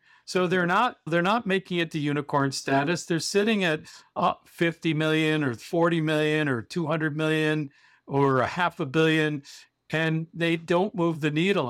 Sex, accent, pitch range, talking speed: male, American, 155-190 Hz, 170 wpm